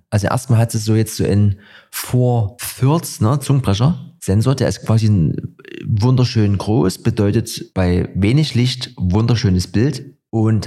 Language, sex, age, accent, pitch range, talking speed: German, male, 30-49, German, 95-125 Hz, 125 wpm